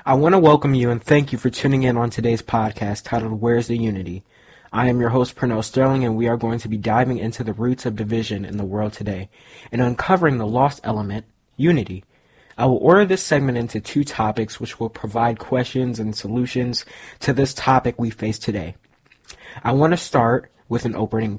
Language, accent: English, American